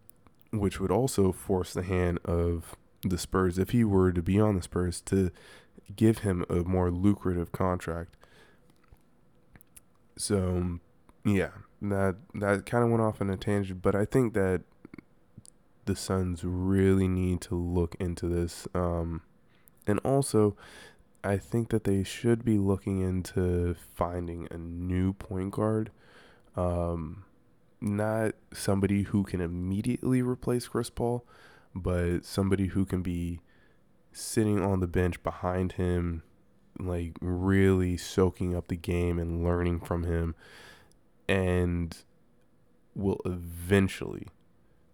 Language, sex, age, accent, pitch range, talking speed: English, male, 20-39, American, 85-100 Hz, 130 wpm